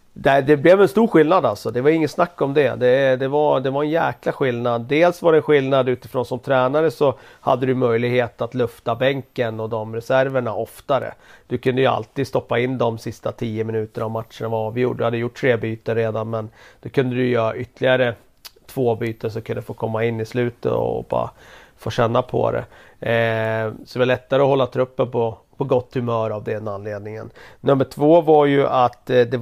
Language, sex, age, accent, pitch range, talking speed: Swedish, male, 40-59, native, 115-135 Hz, 210 wpm